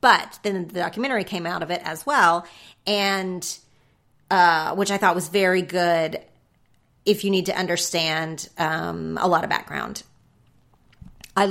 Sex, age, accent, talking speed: female, 30-49, American, 150 wpm